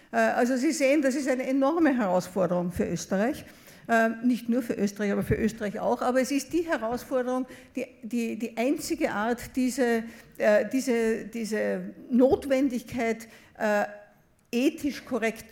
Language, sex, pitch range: German, female, 210-260 Hz